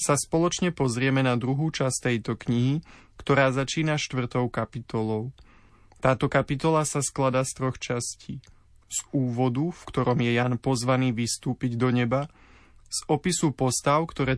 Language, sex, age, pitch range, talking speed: Slovak, male, 20-39, 120-145 Hz, 140 wpm